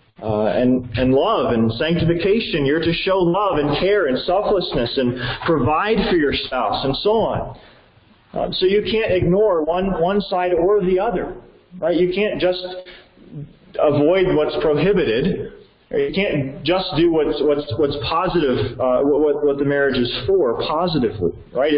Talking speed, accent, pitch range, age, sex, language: 155 wpm, American, 130-180 Hz, 40-59, male, English